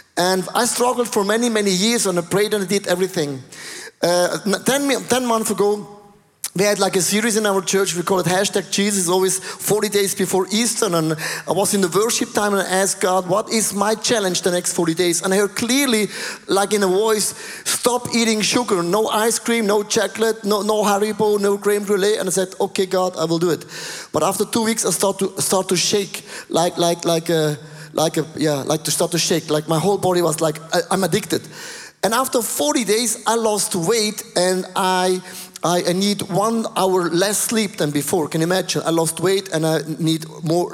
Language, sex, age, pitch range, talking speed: English, male, 30-49, 170-215 Hz, 215 wpm